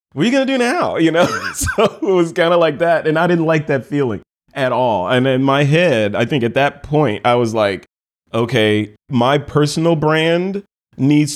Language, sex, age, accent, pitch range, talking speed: English, male, 30-49, American, 120-150 Hz, 210 wpm